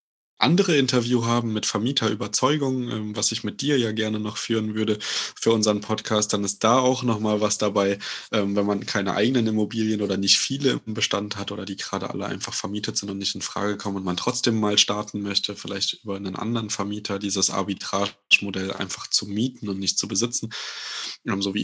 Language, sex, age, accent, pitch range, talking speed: German, male, 20-39, German, 100-115 Hz, 190 wpm